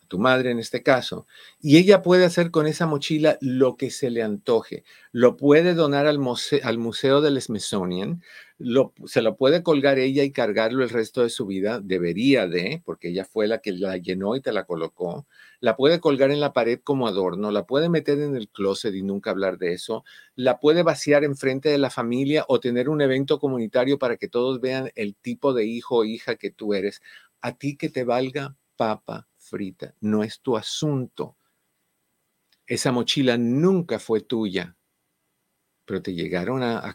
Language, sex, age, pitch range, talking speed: Spanish, male, 50-69, 105-140 Hz, 190 wpm